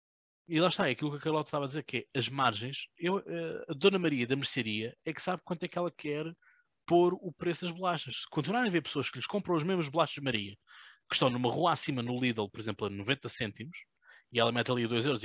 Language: Portuguese